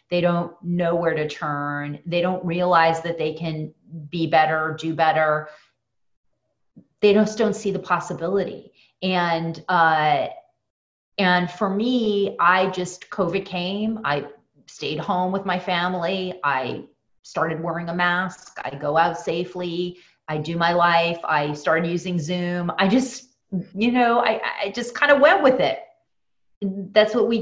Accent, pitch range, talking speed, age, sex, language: American, 165-200 Hz, 150 wpm, 30-49, female, English